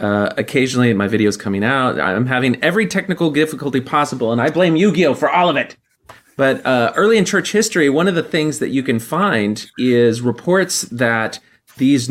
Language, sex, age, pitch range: English, male, 30-49, 115-145 Hz